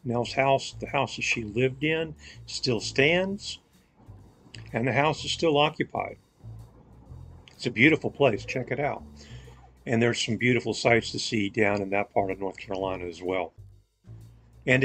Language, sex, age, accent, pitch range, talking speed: English, male, 50-69, American, 105-130 Hz, 160 wpm